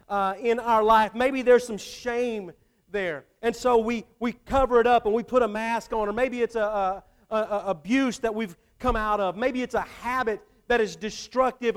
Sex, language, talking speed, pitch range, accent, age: male, English, 215 wpm, 205-260 Hz, American, 40-59